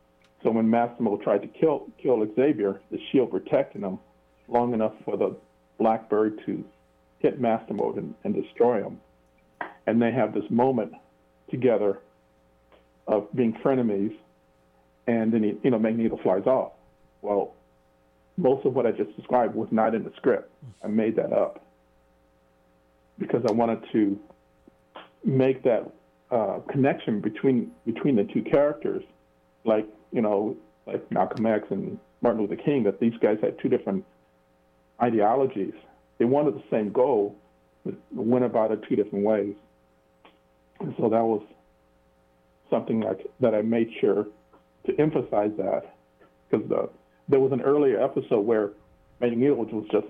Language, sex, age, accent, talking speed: English, male, 50-69, American, 150 wpm